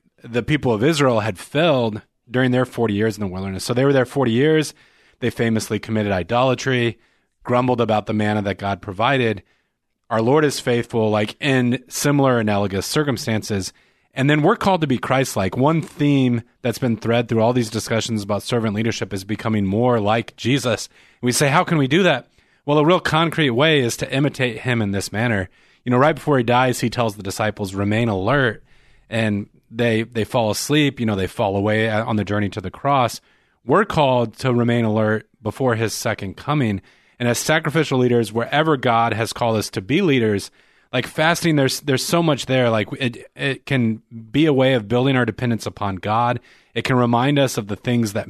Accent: American